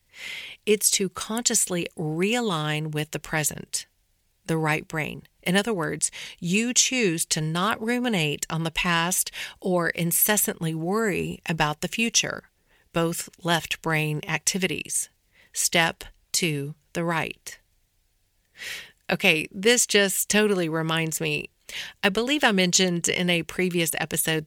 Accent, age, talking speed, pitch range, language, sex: American, 40-59, 120 wpm, 160-210 Hz, English, female